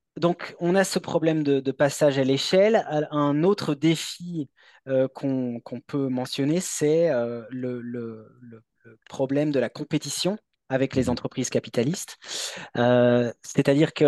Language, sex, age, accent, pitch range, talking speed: French, male, 30-49, French, 125-155 Hz, 135 wpm